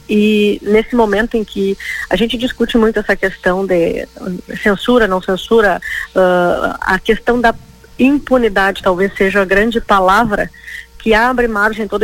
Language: Portuguese